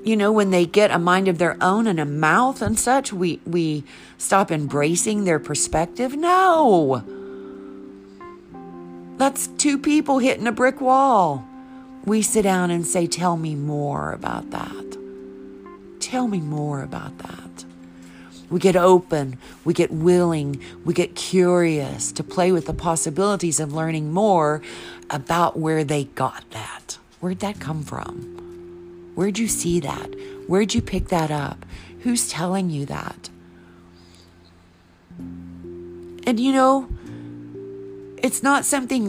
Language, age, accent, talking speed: English, 50-69, American, 135 wpm